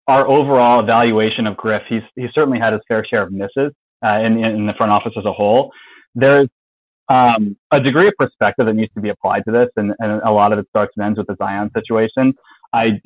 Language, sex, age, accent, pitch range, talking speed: English, male, 30-49, American, 105-130 Hz, 220 wpm